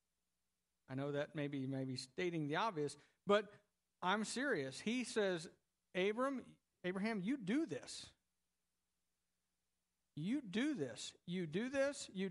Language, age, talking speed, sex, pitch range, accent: English, 50-69, 120 wpm, male, 135-220 Hz, American